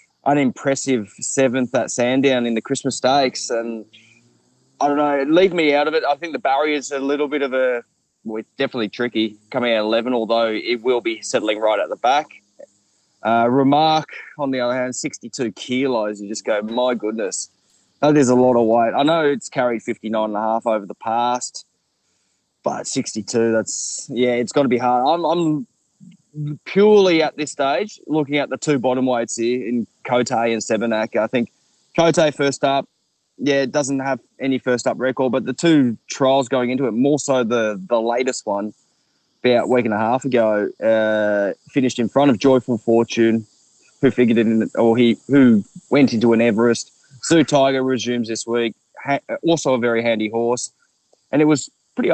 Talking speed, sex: 190 wpm, male